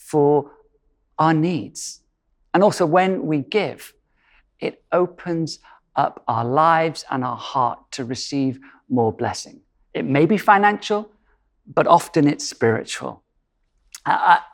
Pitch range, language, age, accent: 130-175 Hz, English, 50-69, British